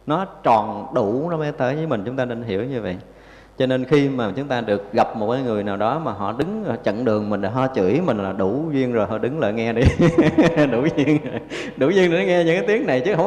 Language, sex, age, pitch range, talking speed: Vietnamese, male, 20-39, 110-145 Hz, 260 wpm